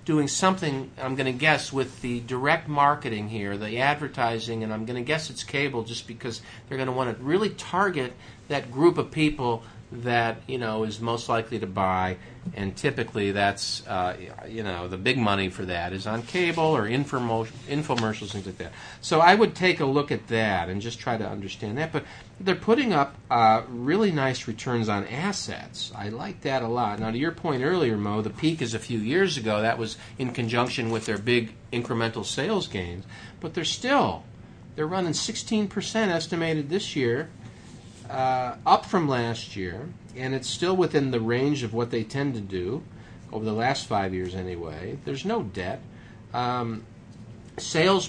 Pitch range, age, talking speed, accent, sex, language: 110-145 Hz, 50-69, 185 wpm, American, male, English